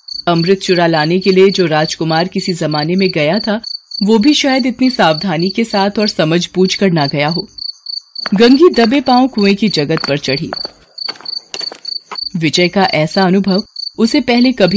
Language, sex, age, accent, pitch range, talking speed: Hindi, female, 30-49, native, 160-235 Hz, 55 wpm